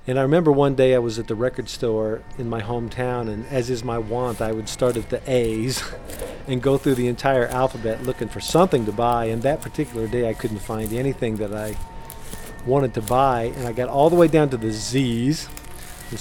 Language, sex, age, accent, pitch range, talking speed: English, male, 50-69, American, 115-135 Hz, 220 wpm